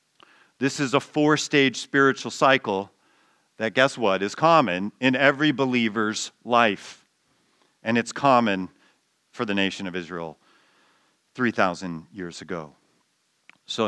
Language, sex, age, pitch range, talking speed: English, male, 40-59, 105-170 Hz, 115 wpm